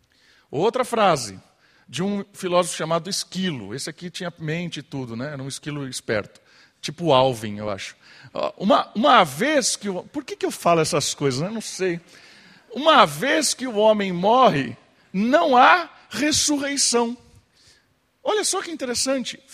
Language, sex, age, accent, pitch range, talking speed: Portuguese, male, 50-69, Brazilian, 190-290 Hz, 155 wpm